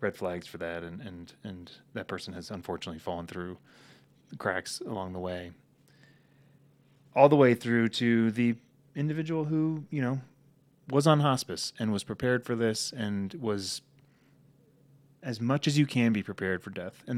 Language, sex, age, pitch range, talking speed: English, male, 30-49, 105-140 Hz, 170 wpm